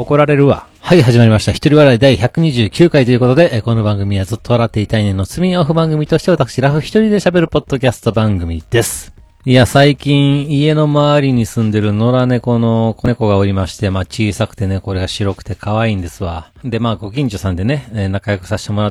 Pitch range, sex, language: 95-120 Hz, male, Japanese